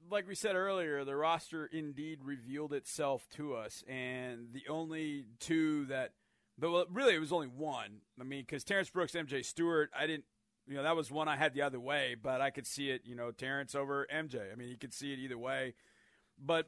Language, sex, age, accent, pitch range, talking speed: English, male, 40-59, American, 135-165 Hz, 215 wpm